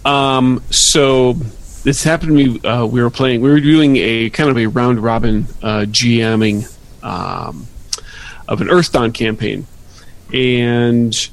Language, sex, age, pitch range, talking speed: English, male, 40-59, 110-130 Hz, 150 wpm